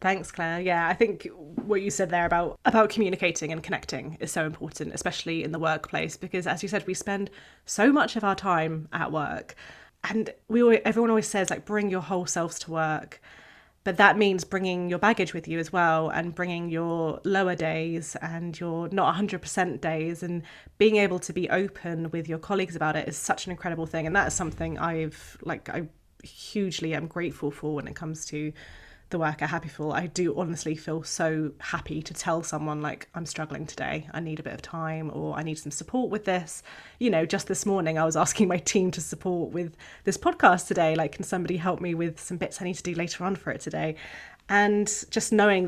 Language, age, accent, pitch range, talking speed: English, 20-39, British, 160-190 Hz, 215 wpm